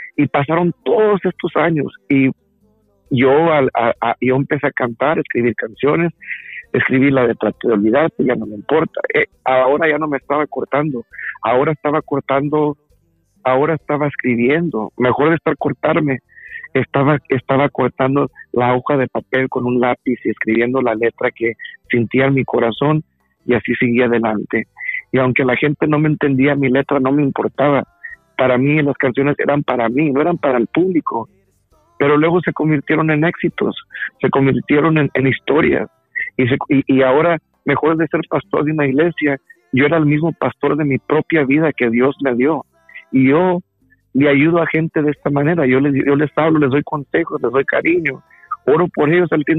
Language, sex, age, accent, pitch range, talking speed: Spanish, male, 50-69, Mexican, 130-155 Hz, 180 wpm